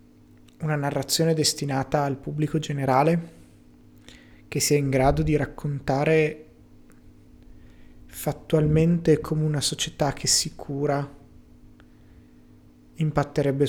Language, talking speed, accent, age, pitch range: Italian, 85 wpm, native, 30-49, 135-155 Hz